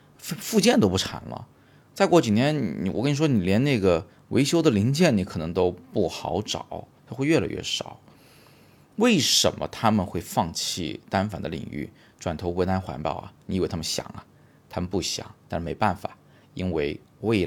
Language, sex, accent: Chinese, male, native